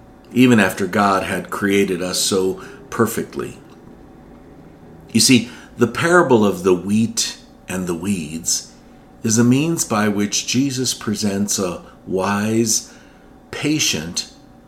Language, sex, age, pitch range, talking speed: English, male, 50-69, 100-130 Hz, 115 wpm